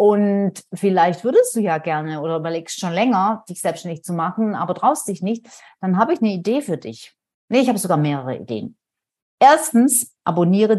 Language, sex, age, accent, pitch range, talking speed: German, female, 40-59, German, 170-235 Hz, 185 wpm